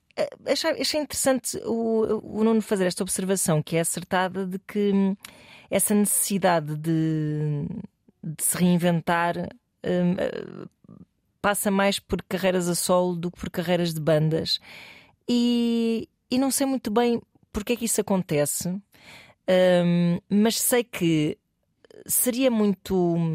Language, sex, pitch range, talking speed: Portuguese, female, 165-205 Hz, 120 wpm